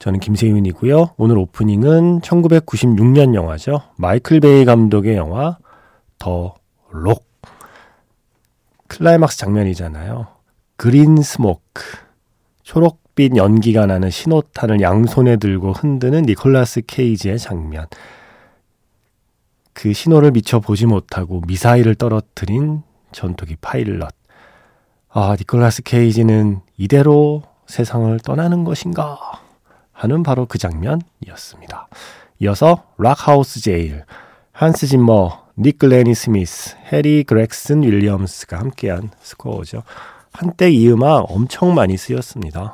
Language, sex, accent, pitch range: Korean, male, native, 95-135 Hz